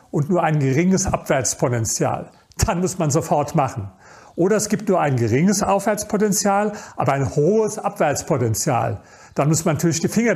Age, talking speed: 40-59, 155 wpm